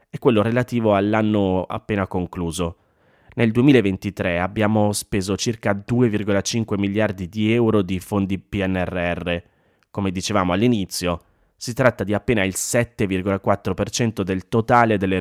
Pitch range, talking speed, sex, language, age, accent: 95-110 Hz, 120 wpm, male, Italian, 20-39, native